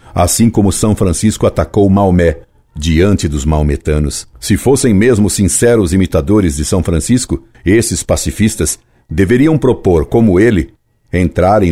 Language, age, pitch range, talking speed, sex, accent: Portuguese, 60-79, 85-110 Hz, 125 wpm, male, Brazilian